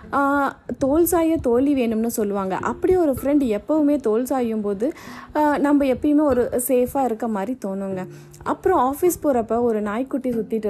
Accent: native